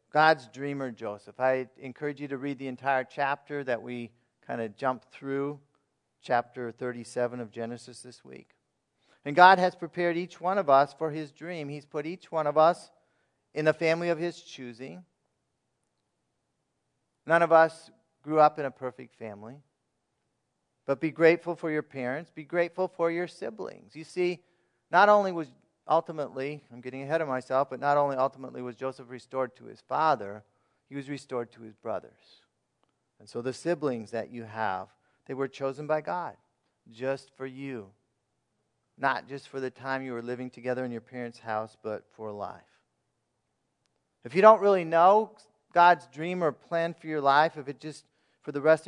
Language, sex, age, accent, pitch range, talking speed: English, male, 40-59, American, 125-160 Hz, 175 wpm